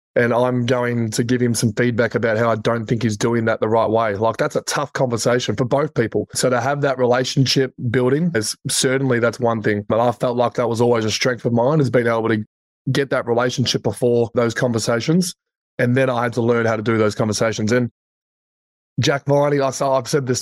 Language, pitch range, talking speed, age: English, 115-130 Hz, 225 wpm, 20-39